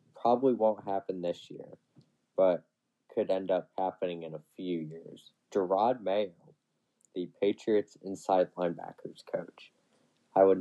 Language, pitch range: English, 90-105 Hz